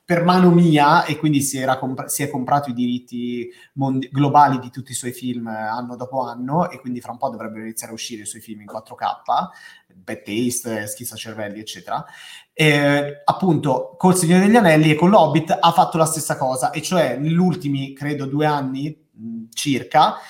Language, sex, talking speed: Italian, male, 185 wpm